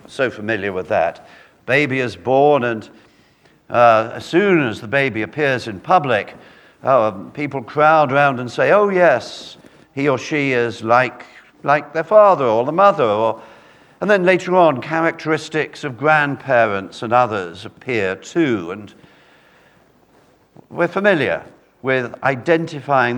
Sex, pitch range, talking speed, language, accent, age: male, 120-155 Hz, 135 wpm, English, British, 50-69